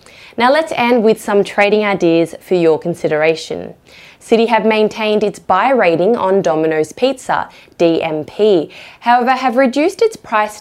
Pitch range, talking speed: 170-245 Hz, 140 wpm